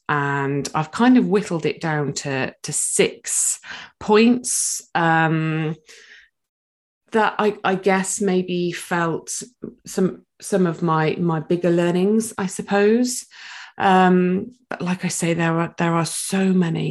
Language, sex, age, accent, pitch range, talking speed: English, female, 30-49, British, 165-215 Hz, 135 wpm